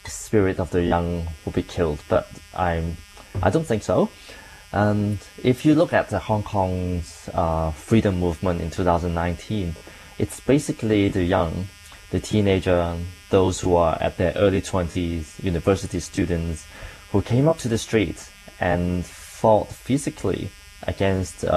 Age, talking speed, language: 20-39, 145 wpm, Danish